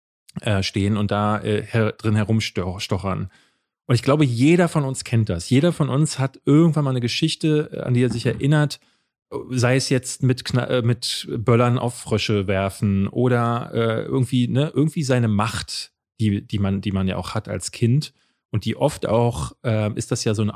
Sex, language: male, German